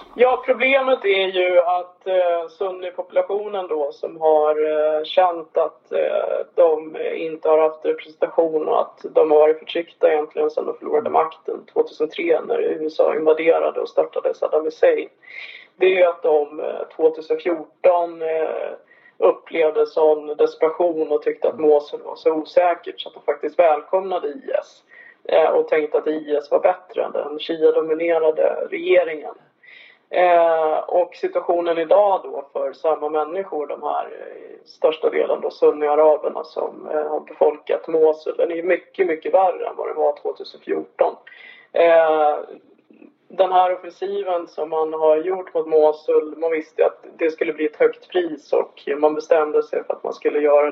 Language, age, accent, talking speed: English, 20-39, Swedish, 150 wpm